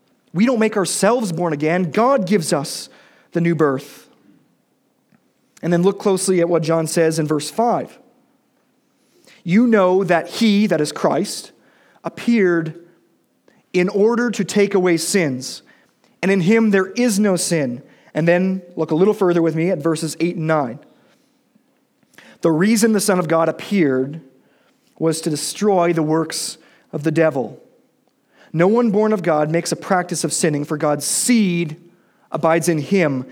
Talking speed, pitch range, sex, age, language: 160 wpm, 165-235 Hz, male, 40-59, English